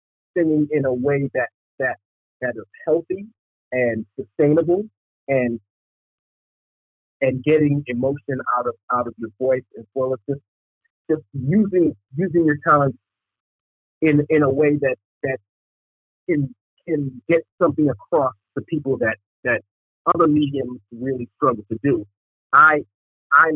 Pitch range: 110-150 Hz